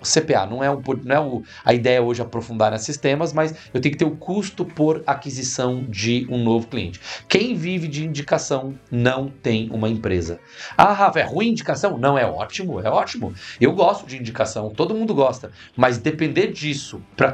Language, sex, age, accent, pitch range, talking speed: Portuguese, male, 40-59, Brazilian, 115-165 Hz, 195 wpm